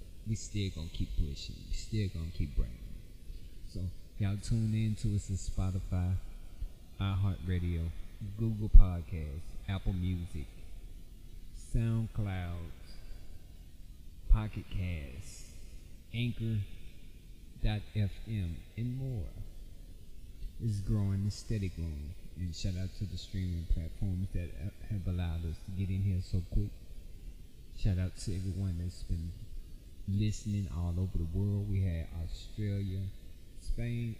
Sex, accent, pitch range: male, American, 85-100 Hz